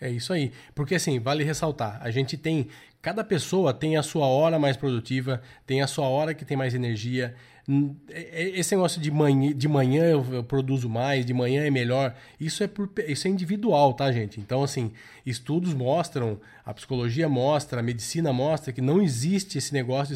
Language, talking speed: Portuguese, 175 wpm